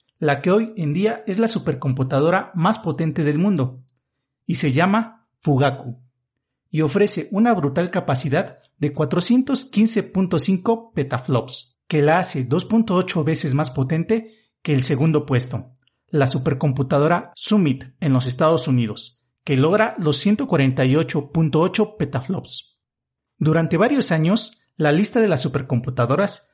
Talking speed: 125 wpm